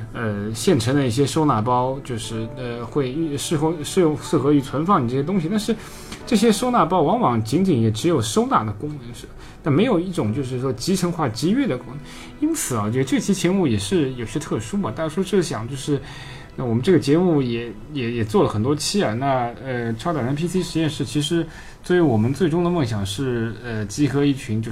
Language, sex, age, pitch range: Chinese, male, 20-39, 115-170 Hz